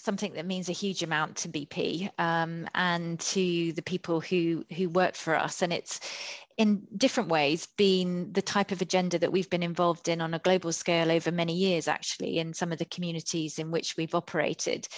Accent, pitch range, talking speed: British, 165-185 Hz, 200 wpm